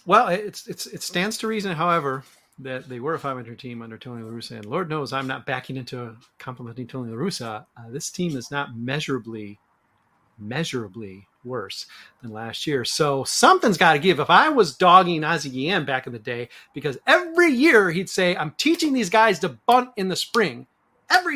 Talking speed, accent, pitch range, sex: 195 wpm, American, 135-200 Hz, male